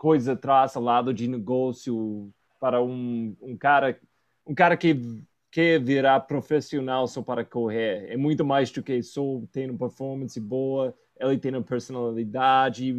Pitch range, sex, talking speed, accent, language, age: 125-170 Hz, male, 150 wpm, Brazilian, Portuguese, 20-39